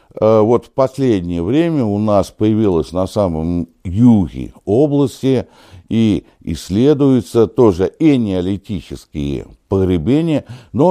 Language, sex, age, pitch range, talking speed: Russian, male, 60-79, 100-145 Hz, 100 wpm